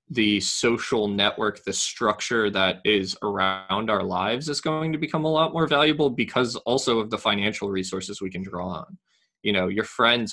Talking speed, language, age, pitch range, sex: 185 wpm, English, 20-39, 100-120 Hz, male